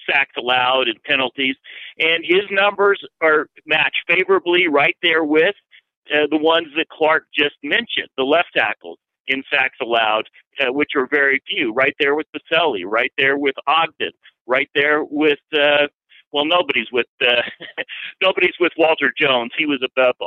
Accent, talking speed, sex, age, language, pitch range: American, 160 wpm, male, 50-69, English, 140-180 Hz